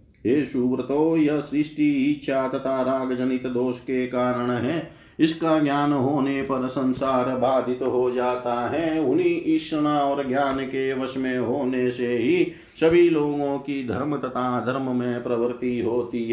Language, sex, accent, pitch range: Hindi, male, native, 120-140 Hz